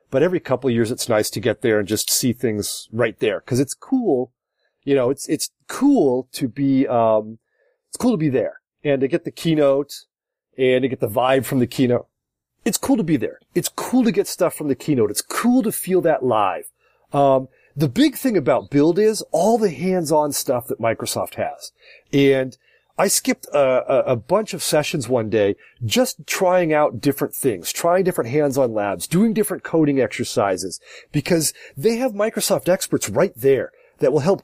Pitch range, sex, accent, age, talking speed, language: 130-190 Hz, male, American, 30-49, 195 wpm, English